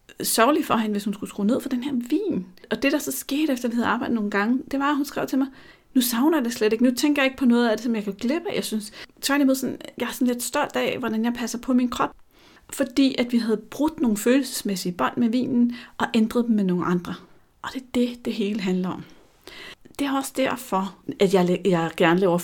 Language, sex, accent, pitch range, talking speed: Danish, female, native, 180-240 Hz, 255 wpm